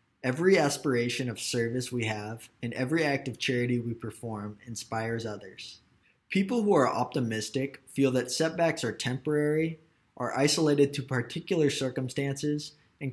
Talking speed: 135 wpm